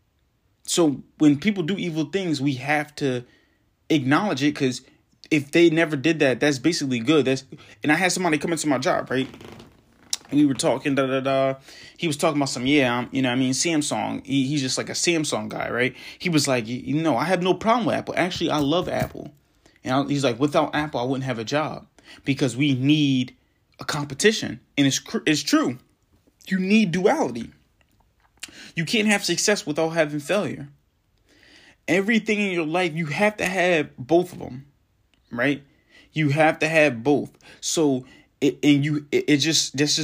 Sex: male